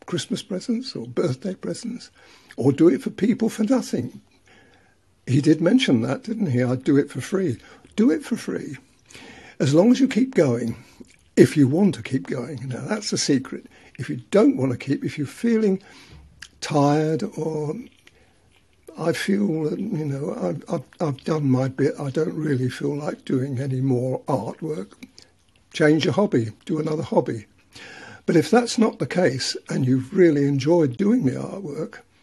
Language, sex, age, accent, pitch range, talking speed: English, male, 60-79, British, 130-185 Hz, 170 wpm